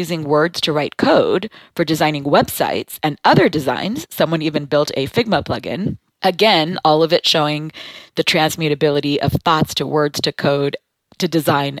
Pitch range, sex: 145-185 Hz, female